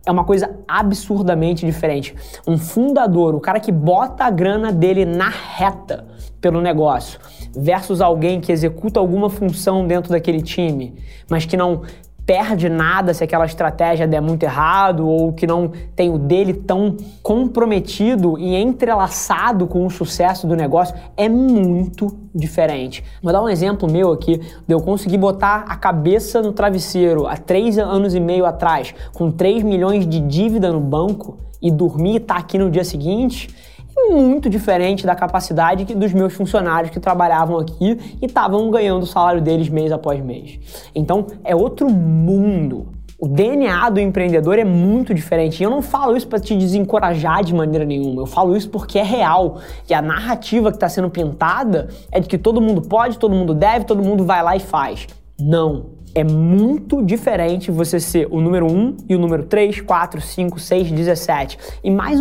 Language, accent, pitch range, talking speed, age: Portuguese, Brazilian, 165-205 Hz, 175 wpm, 20-39